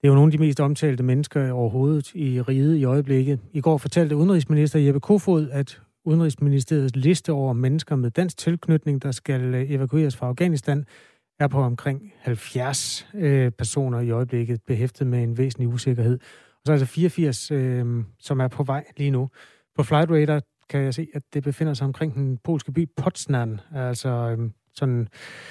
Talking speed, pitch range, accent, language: 170 wpm, 125-150 Hz, native, Danish